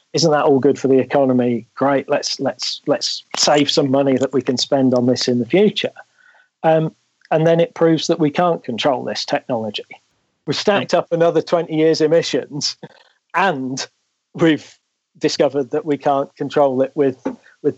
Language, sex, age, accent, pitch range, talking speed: English, male, 40-59, British, 125-155 Hz, 170 wpm